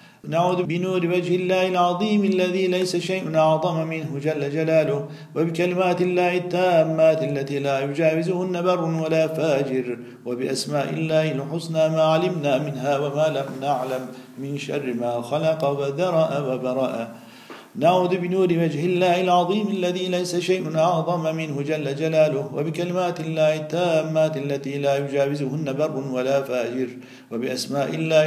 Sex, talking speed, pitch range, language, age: male, 125 wpm, 140-170 Hz, Turkish, 50-69